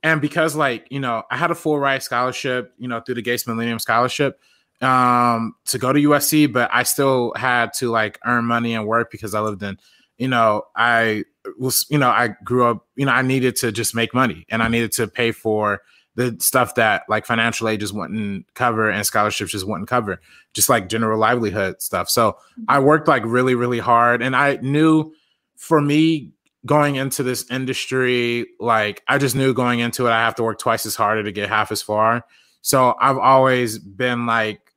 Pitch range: 110-130 Hz